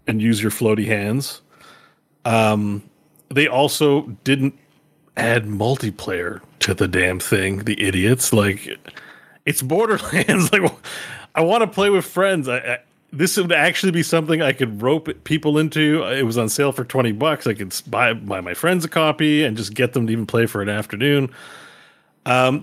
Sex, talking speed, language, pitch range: male, 170 wpm, English, 110-145 Hz